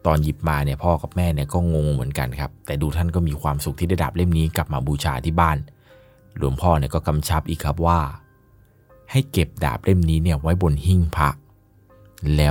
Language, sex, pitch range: Thai, male, 75-95 Hz